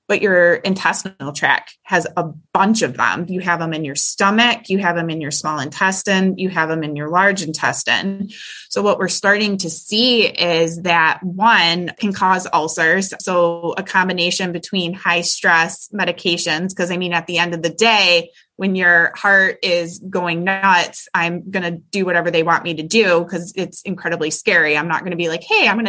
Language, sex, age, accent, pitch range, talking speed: English, female, 20-39, American, 170-205 Hz, 200 wpm